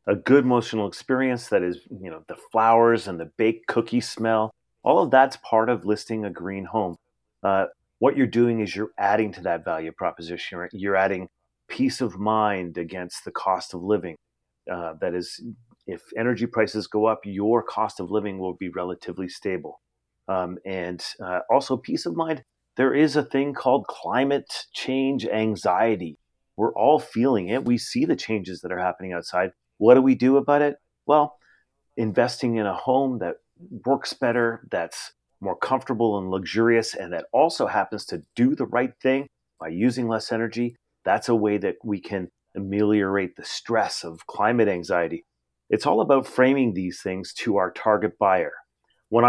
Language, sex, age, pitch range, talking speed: English, male, 30-49, 95-120 Hz, 175 wpm